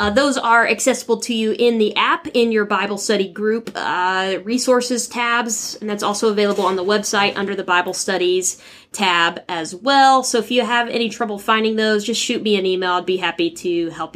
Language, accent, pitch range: English, American, 185-225 Hz